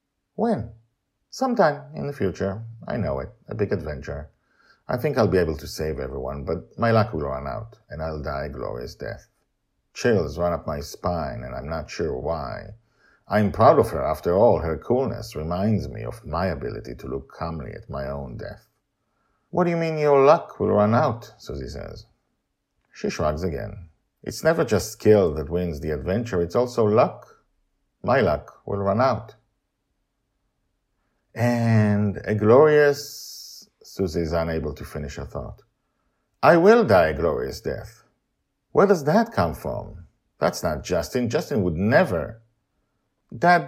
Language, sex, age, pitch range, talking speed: English, male, 50-69, 85-120 Hz, 165 wpm